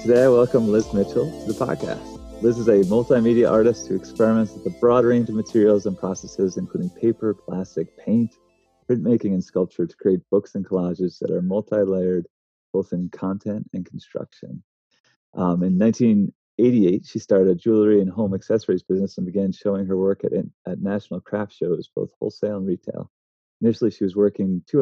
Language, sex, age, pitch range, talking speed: English, male, 30-49, 90-105 Hz, 175 wpm